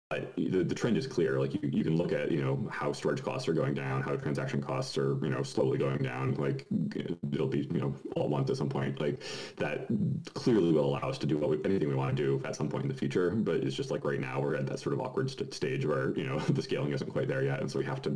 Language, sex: English, male